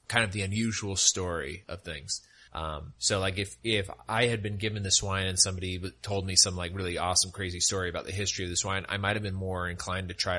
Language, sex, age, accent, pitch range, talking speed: English, male, 30-49, American, 95-105 Hz, 235 wpm